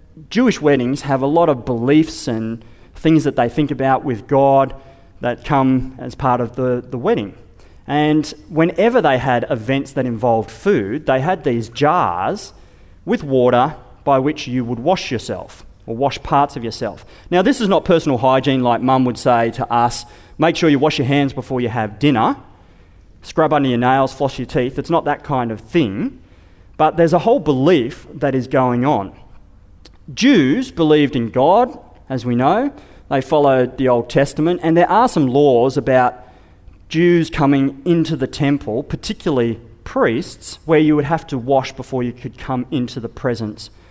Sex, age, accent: male, 30-49, Australian